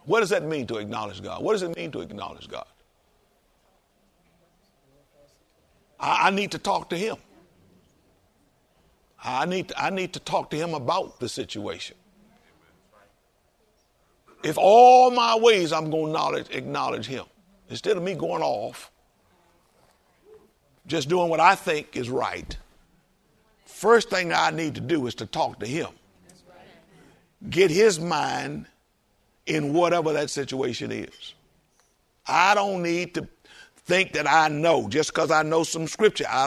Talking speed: 140 wpm